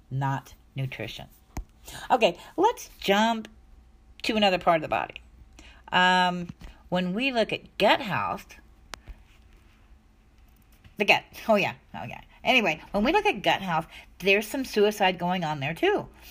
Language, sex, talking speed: English, female, 140 wpm